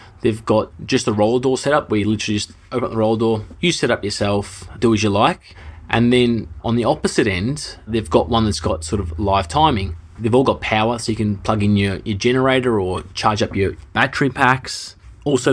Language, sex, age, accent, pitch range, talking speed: English, male, 20-39, Australian, 105-120 Hz, 230 wpm